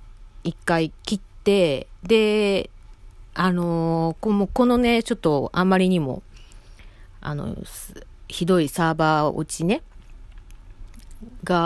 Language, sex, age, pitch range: Japanese, female, 40-59, 145-200 Hz